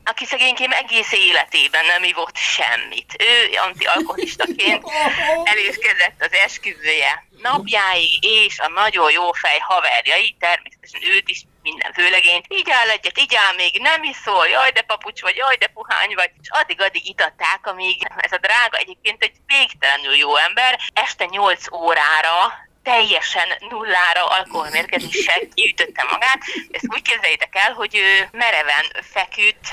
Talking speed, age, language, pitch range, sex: 135 wpm, 30-49, Hungarian, 190-300 Hz, female